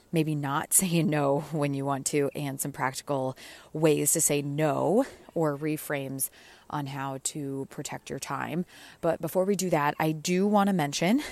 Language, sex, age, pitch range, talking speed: English, female, 20-39, 140-165 Hz, 175 wpm